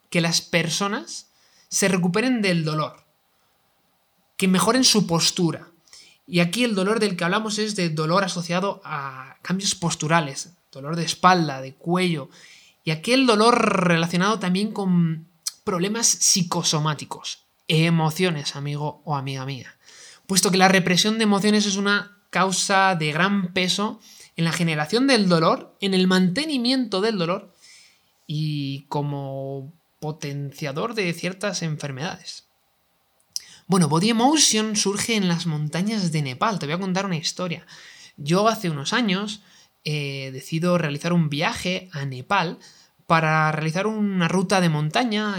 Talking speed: 140 wpm